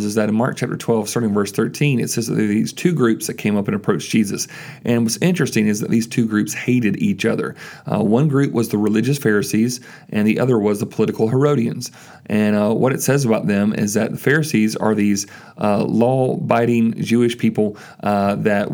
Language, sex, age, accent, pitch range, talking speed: English, male, 40-59, American, 105-125 Hz, 215 wpm